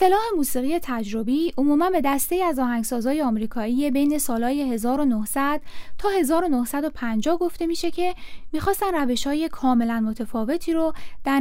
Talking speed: 125 wpm